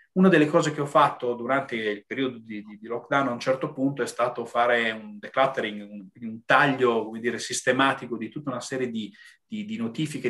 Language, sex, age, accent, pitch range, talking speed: Italian, male, 30-49, native, 120-140 Hz, 205 wpm